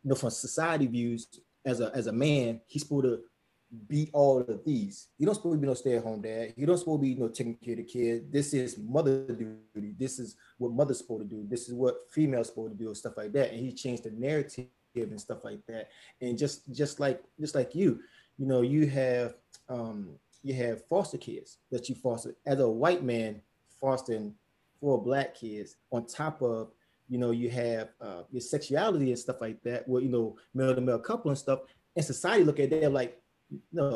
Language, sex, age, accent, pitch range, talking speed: English, male, 20-39, American, 115-135 Hz, 225 wpm